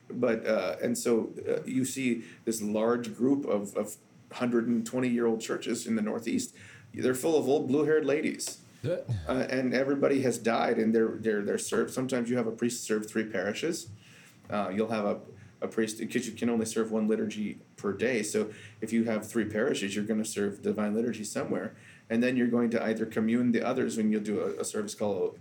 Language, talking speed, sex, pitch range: English, 200 wpm, male, 110-125 Hz